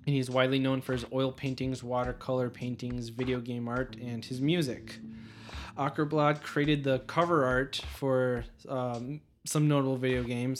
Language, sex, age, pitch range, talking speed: English, male, 20-39, 120-135 Hz, 155 wpm